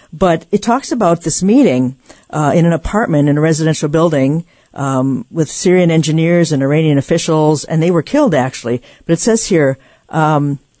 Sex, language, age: female, English, 50-69